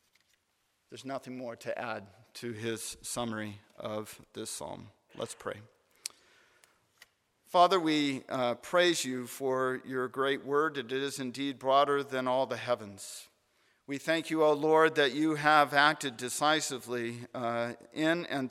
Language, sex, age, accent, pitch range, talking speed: English, male, 50-69, American, 125-150 Hz, 140 wpm